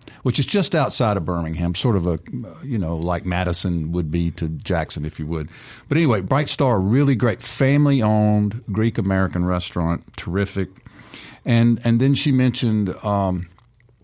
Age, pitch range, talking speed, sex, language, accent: 50-69, 90-120 Hz, 160 wpm, male, English, American